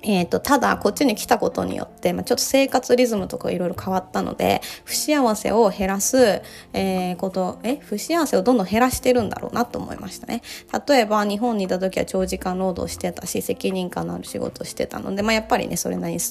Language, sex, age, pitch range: Japanese, female, 20-39, 185-245 Hz